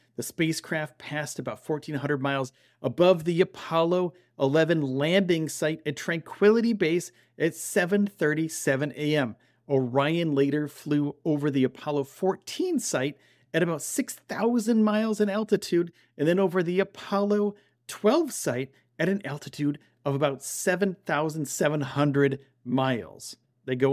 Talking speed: 120 wpm